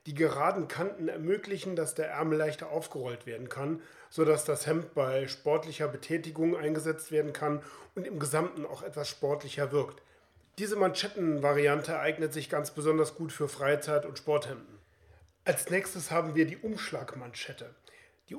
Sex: male